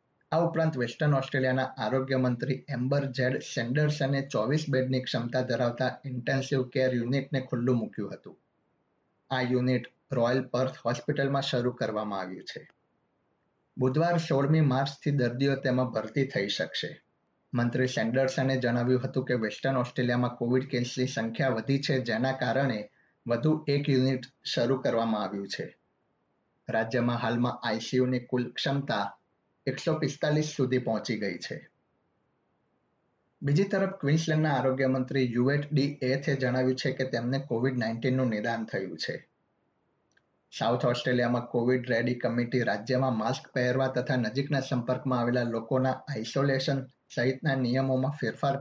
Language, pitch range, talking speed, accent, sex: Gujarati, 125-135 Hz, 45 wpm, native, male